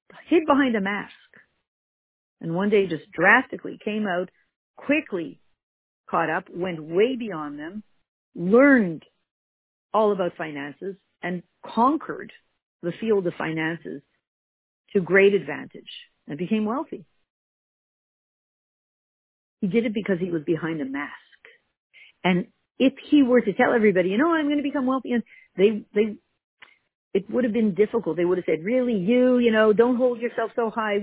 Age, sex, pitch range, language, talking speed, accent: 50-69, female, 175-240 Hz, English, 155 wpm, American